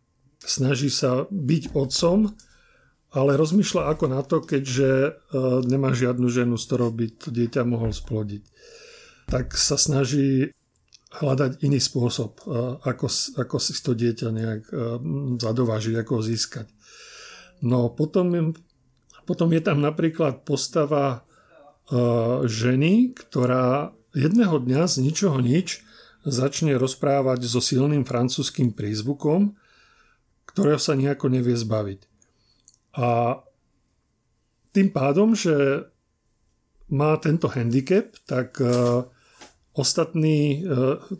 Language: Slovak